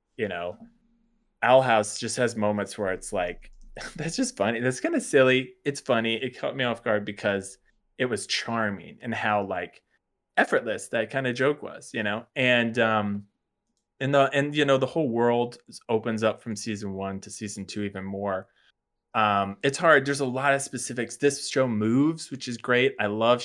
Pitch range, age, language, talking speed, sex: 105-130 Hz, 20-39, English, 190 wpm, male